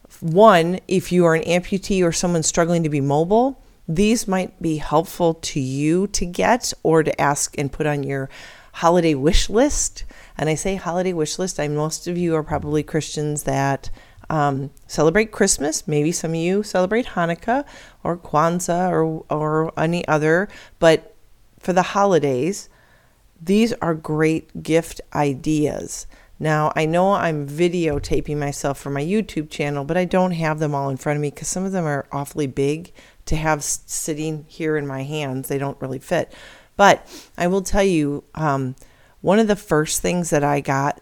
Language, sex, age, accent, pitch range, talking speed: English, female, 40-59, American, 140-175 Hz, 175 wpm